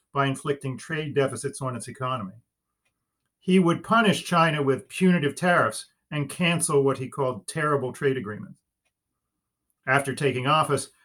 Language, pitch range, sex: English, 135-170 Hz, male